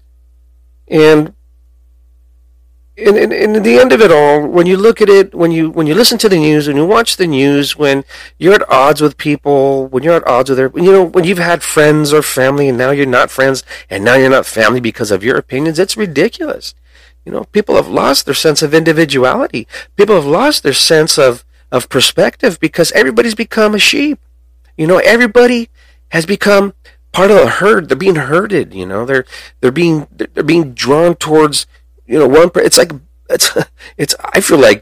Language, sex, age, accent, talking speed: English, male, 40-59, American, 200 wpm